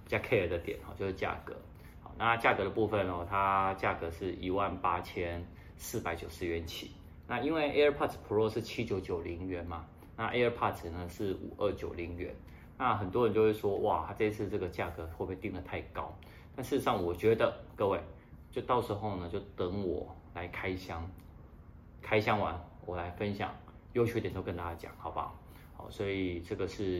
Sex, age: male, 20-39